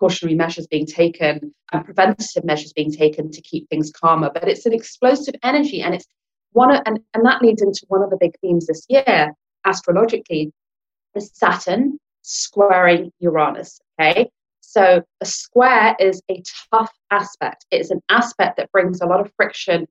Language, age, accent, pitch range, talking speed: English, 30-49, British, 170-215 Hz, 165 wpm